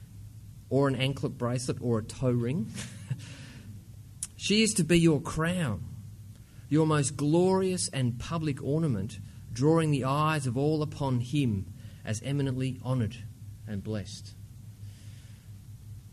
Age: 30-49